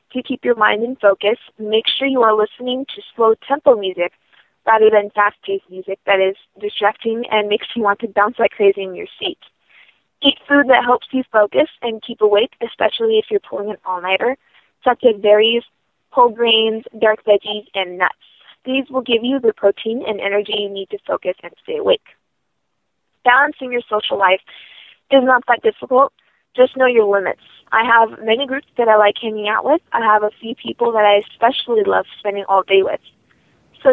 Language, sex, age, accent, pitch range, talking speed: English, female, 20-39, American, 205-260 Hz, 190 wpm